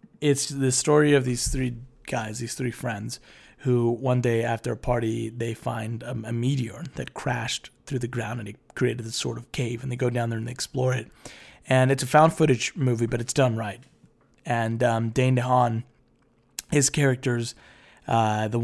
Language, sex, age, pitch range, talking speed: English, male, 20-39, 115-130 Hz, 190 wpm